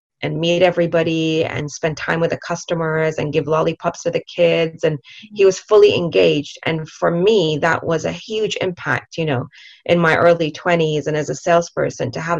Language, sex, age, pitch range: English, female, 30-49, 155-185 Hz